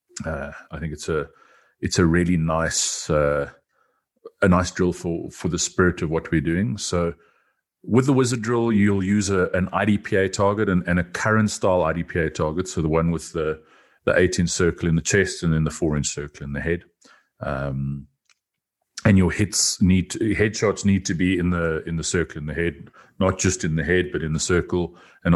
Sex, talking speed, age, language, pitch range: male, 205 wpm, 40-59, English, 80-100 Hz